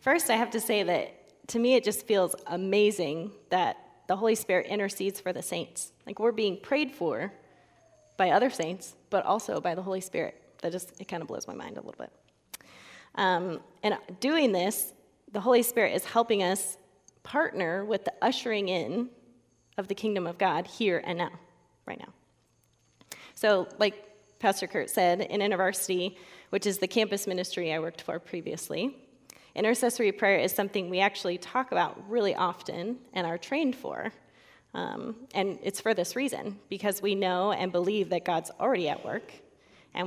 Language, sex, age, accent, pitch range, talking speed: English, female, 20-39, American, 180-215 Hz, 175 wpm